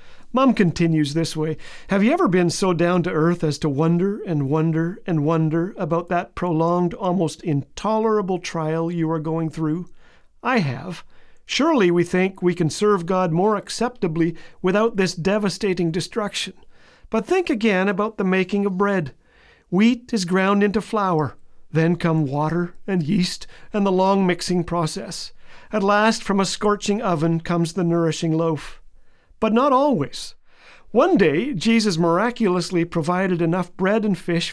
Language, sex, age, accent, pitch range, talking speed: English, male, 50-69, American, 165-205 Hz, 155 wpm